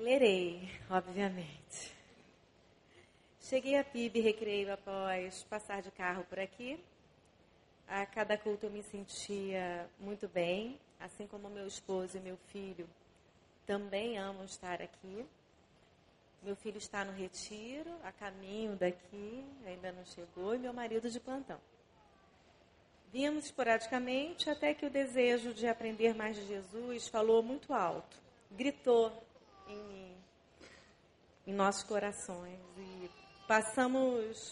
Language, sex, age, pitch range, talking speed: Portuguese, female, 30-49, 190-235 Hz, 120 wpm